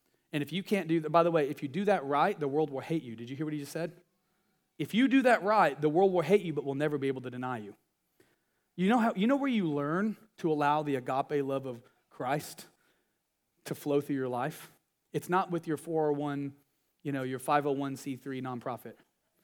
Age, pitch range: 30-49, 145-185 Hz